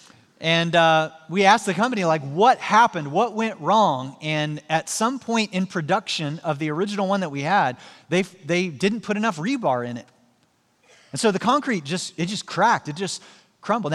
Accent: American